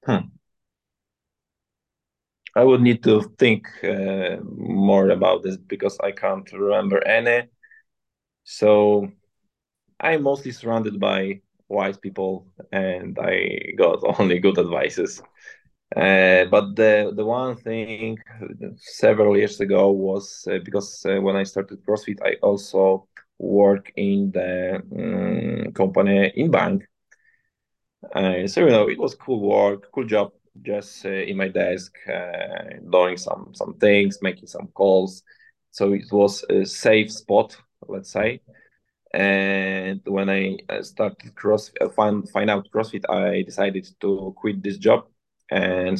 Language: English